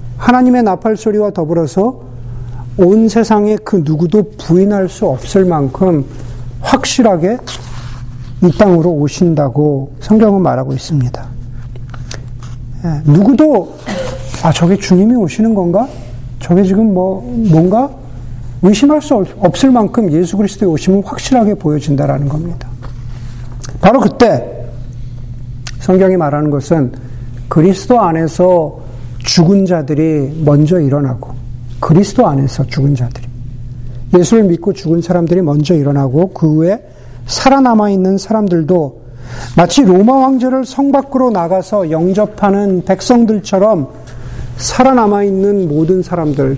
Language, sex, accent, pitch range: Korean, male, native, 125-195 Hz